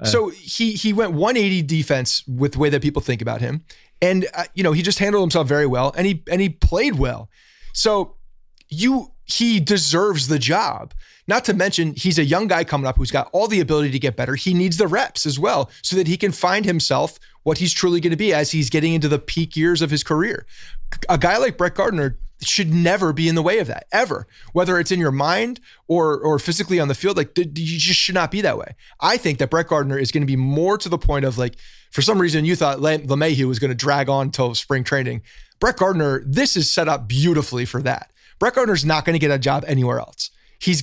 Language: English